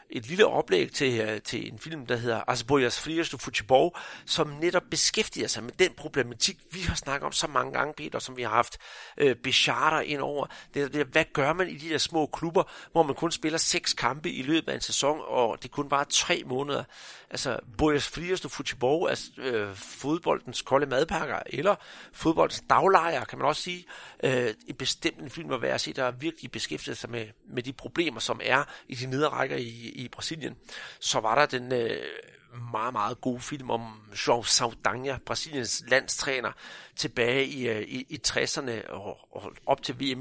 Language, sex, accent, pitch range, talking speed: Danish, male, native, 120-155 Hz, 190 wpm